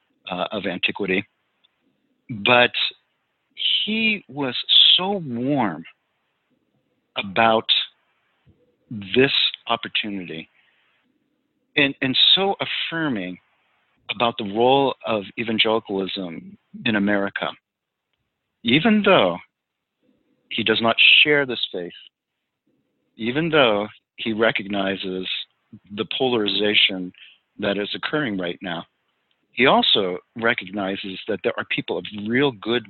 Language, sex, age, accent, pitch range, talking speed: English, male, 50-69, American, 100-130 Hz, 95 wpm